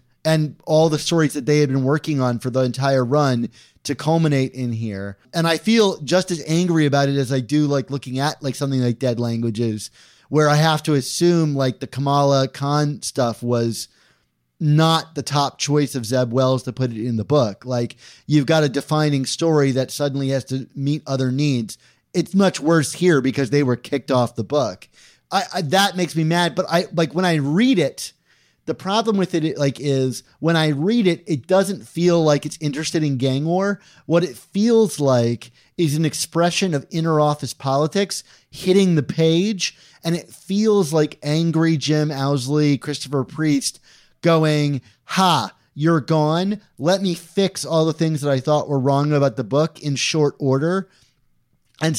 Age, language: 30-49, English